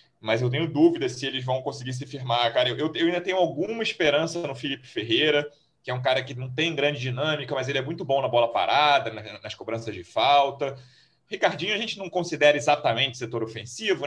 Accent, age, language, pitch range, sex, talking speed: Brazilian, 30-49, Portuguese, 120-165 Hz, male, 210 wpm